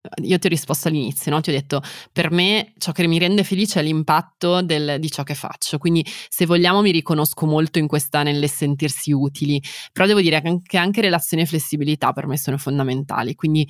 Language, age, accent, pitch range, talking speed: Italian, 20-39, native, 150-185 Hz, 210 wpm